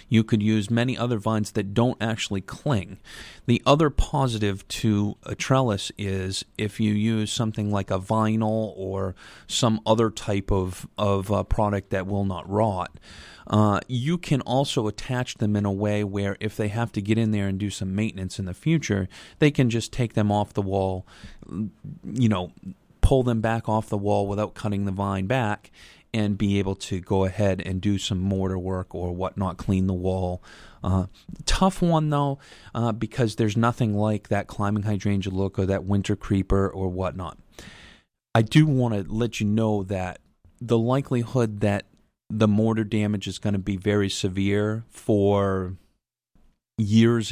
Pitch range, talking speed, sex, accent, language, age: 95-110 Hz, 175 wpm, male, American, English, 30-49